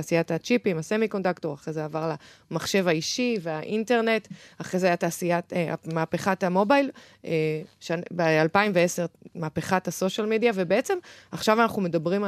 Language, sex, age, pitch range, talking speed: Hebrew, female, 20-39, 165-195 Hz, 120 wpm